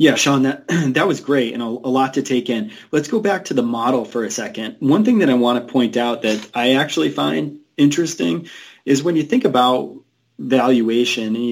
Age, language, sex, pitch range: 30-49, English, male, 110-135 Hz